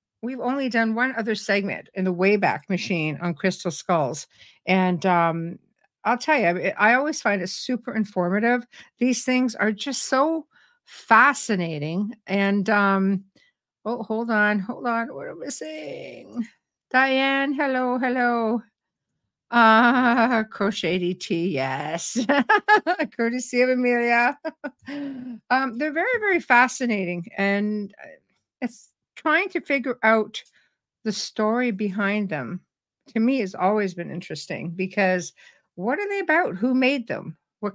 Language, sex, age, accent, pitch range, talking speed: English, female, 60-79, American, 190-255 Hz, 130 wpm